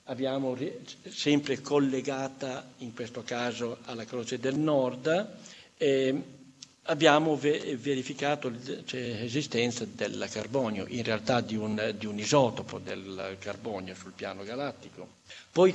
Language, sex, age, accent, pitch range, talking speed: Italian, male, 60-79, native, 120-150 Hz, 110 wpm